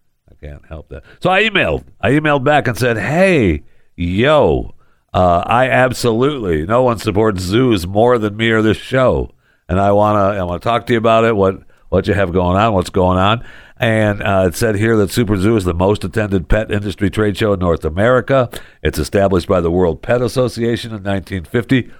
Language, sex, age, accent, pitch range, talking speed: English, male, 60-79, American, 95-130 Hz, 205 wpm